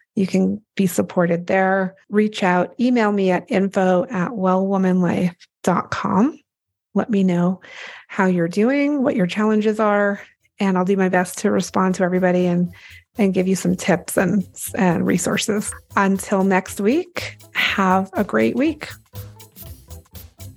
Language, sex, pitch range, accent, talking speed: English, female, 165-200 Hz, American, 140 wpm